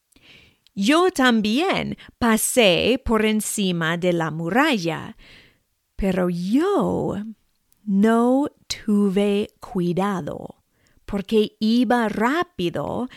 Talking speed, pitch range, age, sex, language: 75 wpm, 190-255 Hz, 40-59, female, English